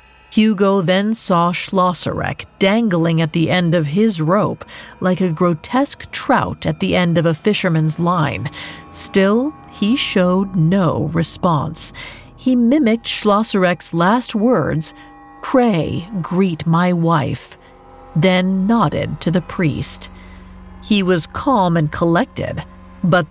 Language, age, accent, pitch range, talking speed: English, 40-59, American, 160-215 Hz, 120 wpm